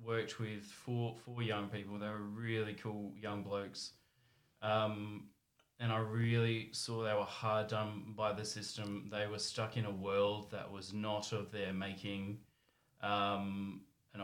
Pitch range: 105-115 Hz